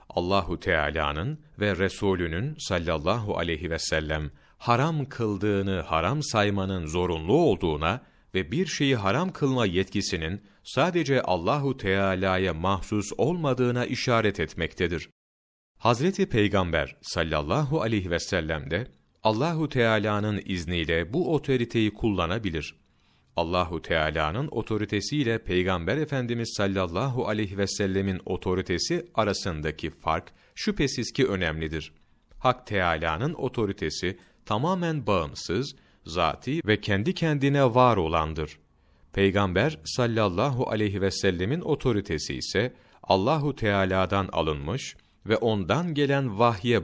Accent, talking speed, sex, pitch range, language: native, 100 wpm, male, 90-130 Hz, Turkish